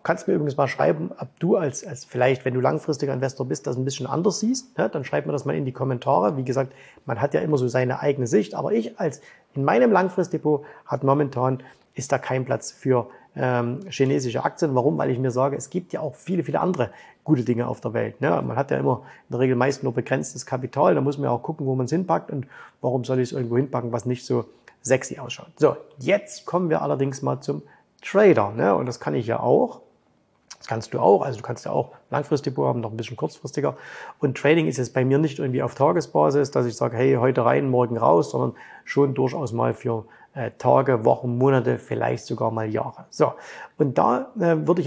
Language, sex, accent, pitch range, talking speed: German, male, German, 125-155 Hz, 235 wpm